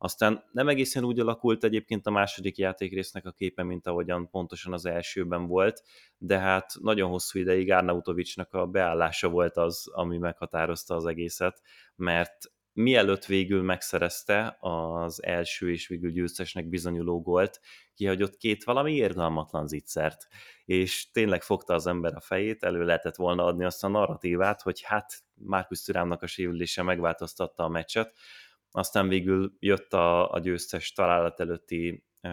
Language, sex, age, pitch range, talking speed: Hungarian, male, 30-49, 85-95 Hz, 145 wpm